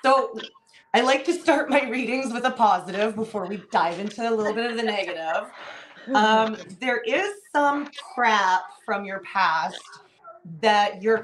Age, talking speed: 20-39, 160 wpm